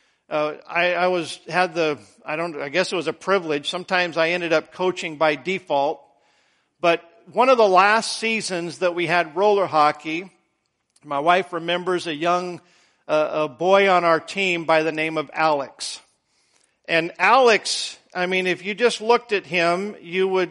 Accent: American